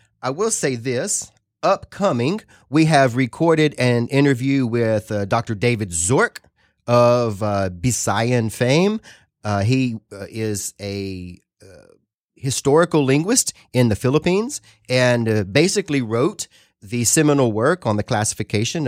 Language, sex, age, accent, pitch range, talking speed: English, male, 30-49, American, 110-140 Hz, 125 wpm